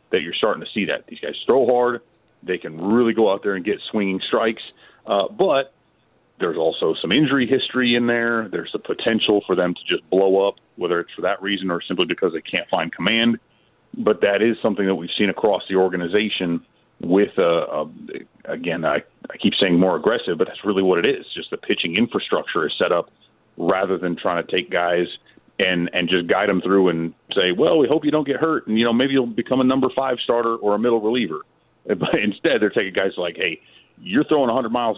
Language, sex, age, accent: English, male, 30-49, American